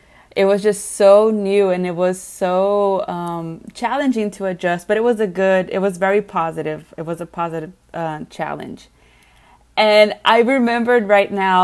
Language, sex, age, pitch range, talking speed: English, female, 20-39, 185-220 Hz, 170 wpm